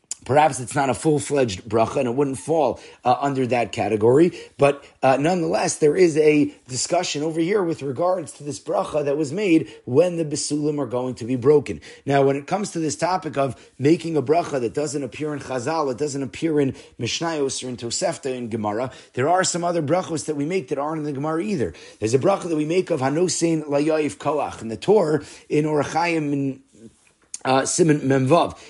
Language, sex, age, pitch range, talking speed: English, male, 30-49, 130-160 Hz, 205 wpm